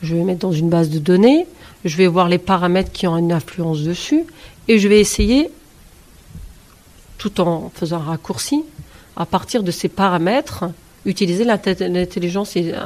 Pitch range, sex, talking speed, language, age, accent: 175-215 Hz, female, 160 wpm, French, 40-59, French